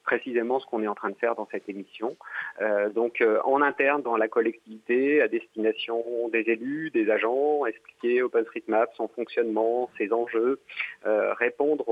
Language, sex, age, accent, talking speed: French, male, 30-49, French, 165 wpm